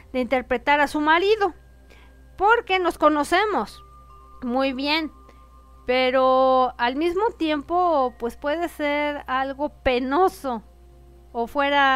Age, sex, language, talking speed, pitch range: 40-59, female, Spanish, 105 wpm, 225-300 Hz